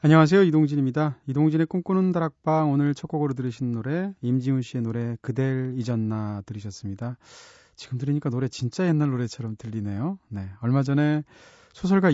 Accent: native